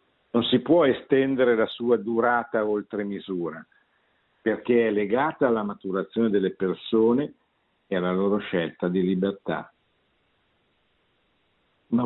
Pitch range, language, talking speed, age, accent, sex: 100-125 Hz, Italian, 115 wpm, 50-69, native, male